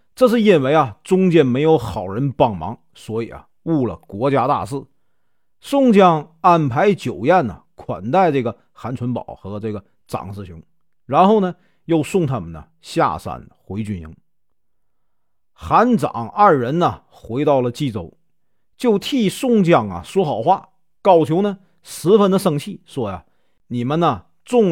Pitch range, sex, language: 120-200 Hz, male, Chinese